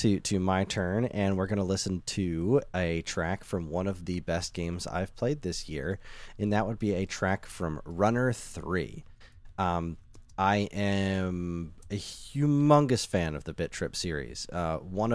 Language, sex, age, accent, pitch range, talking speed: English, male, 30-49, American, 85-105 Hz, 170 wpm